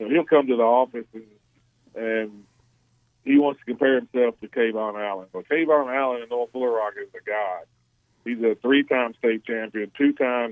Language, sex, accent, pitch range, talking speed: English, male, American, 115-135 Hz, 195 wpm